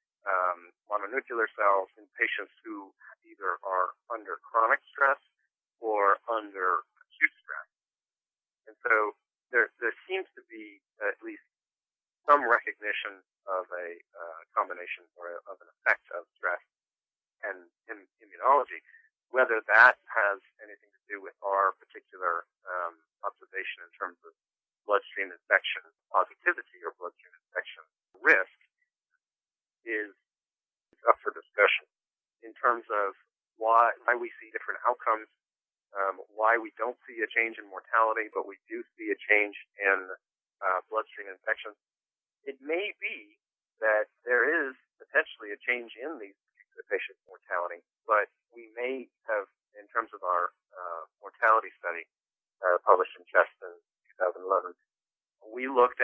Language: English